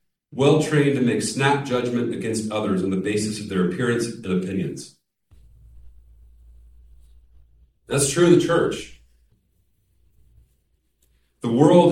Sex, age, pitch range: male, 40-59, 105-160 Hz